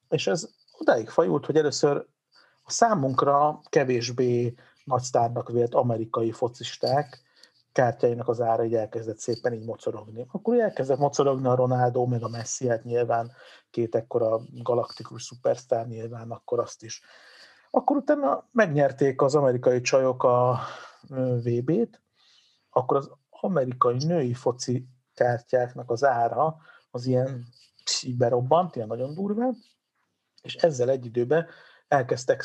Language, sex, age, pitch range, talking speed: Hungarian, male, 50-69, 115-130 Hz, 120 wpm